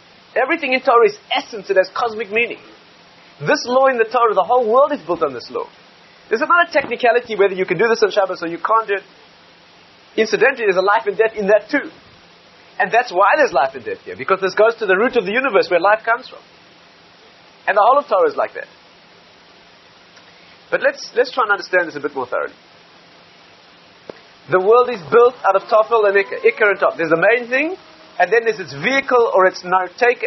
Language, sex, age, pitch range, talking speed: English, male, 30-49, 185-245 Hz, 220 wpm